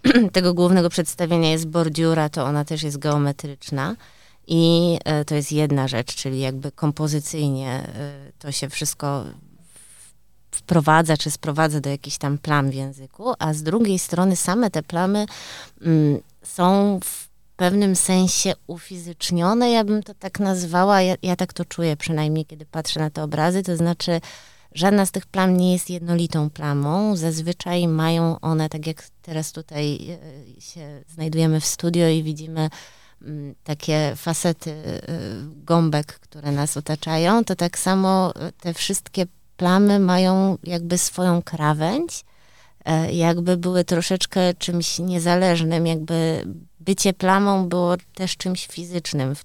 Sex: female